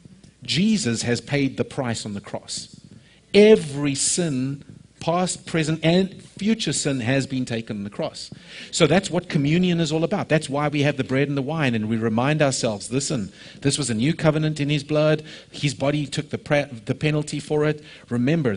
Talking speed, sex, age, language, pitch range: 190 wpm, male, 50-69, English, 115-155 Hz